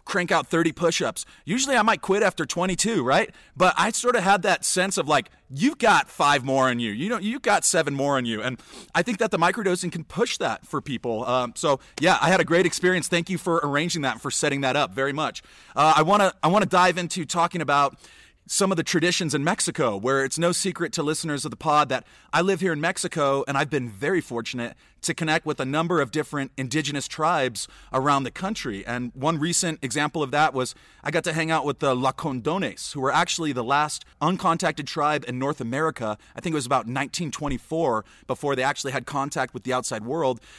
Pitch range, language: 130-170 Hz, English